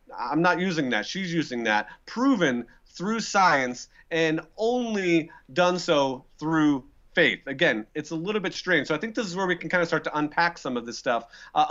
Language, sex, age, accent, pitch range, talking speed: English, male, 30-49, American, 145-185 Hz, 205 wpm